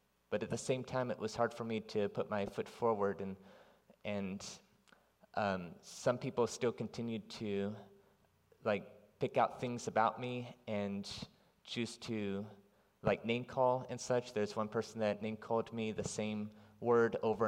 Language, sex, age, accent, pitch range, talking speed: English, male, 30-49, American, 105-120 Hz, 165 wpm